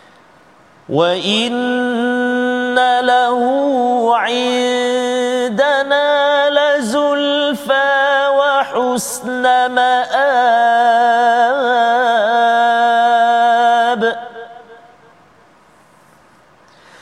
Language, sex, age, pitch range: Malayalam, male, 30-49, 245-290 Hz